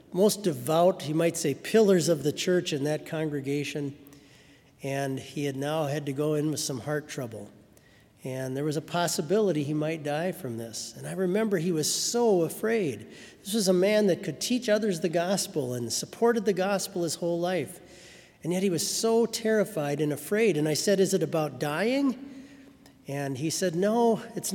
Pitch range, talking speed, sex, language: 150-210 Hz, 190 wpm, male, English